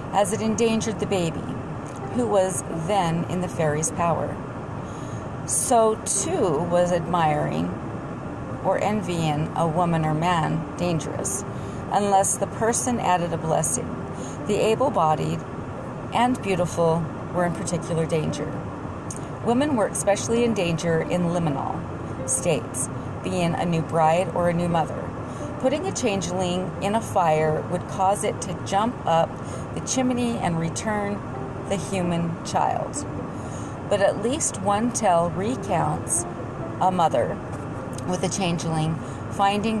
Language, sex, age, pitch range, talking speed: English, female, 40-59, 155-190 Hz, 125 wpm